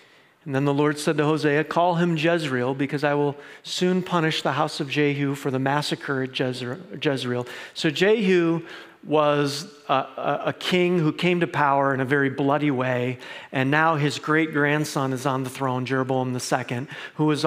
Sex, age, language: male, 40-59, English